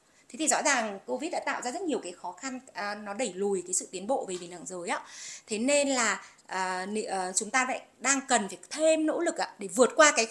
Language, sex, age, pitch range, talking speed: Vietnamese, female, 20-39, 200-290 Hz, 235 wpm